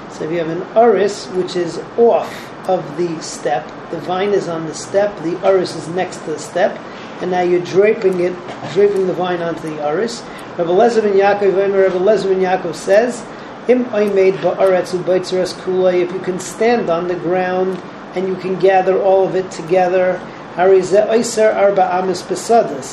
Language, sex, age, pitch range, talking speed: English, male, 40-59, 180-200 Hz, 145 wpm